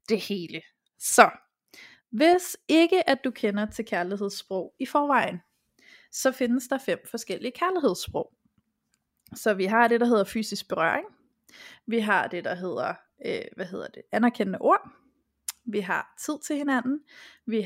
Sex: female